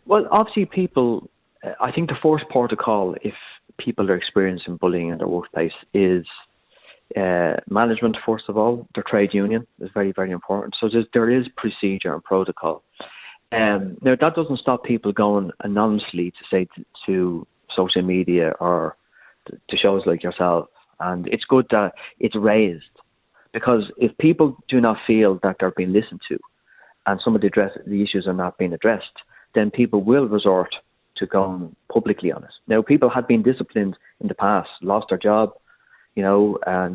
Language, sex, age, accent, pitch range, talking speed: English, male, 30-49, Irish, 95-120 Hz, 170 wpm